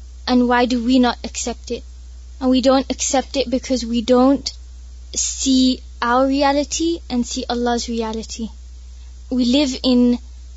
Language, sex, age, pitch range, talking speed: Urdu, female, 20-39, 220-270 Hz, 140 wpm